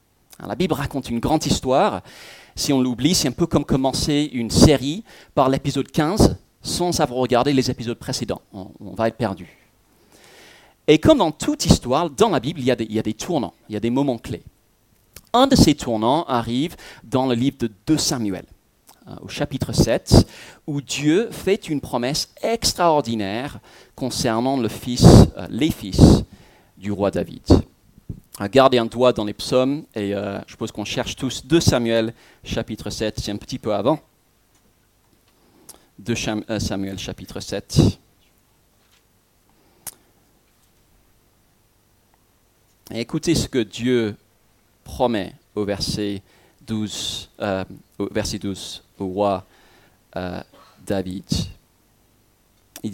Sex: male